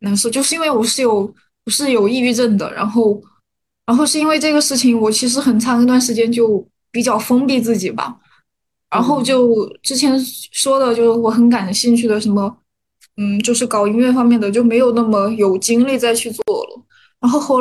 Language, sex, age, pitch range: Chinese, female, 20-39, 215-255 Hz